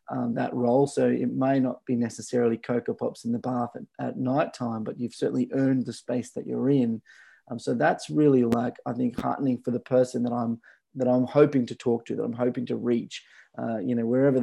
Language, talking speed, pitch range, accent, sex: English, 230 wpm, 125-150 Hz, Australian, male